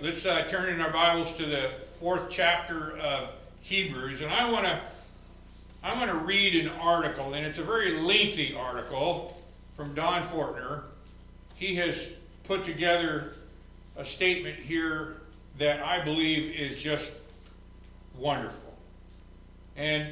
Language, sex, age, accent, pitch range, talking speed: English, male, 50-69, American, 140-185 Hz, 125 wpm